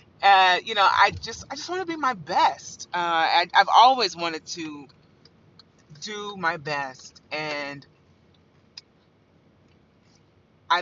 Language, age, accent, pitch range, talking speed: English, 30-49, American, 140-200 Hz, 120 wpm